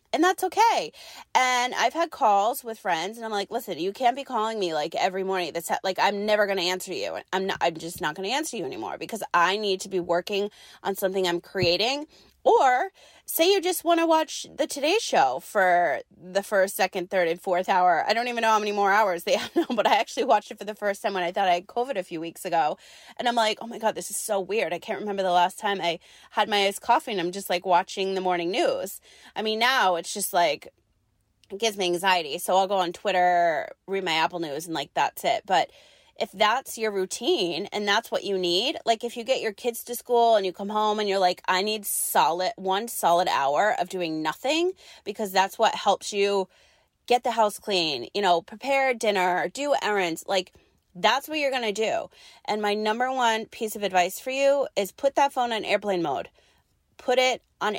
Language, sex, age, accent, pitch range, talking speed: English, female, 20-39, American, 185-235 Hz, 230 wpm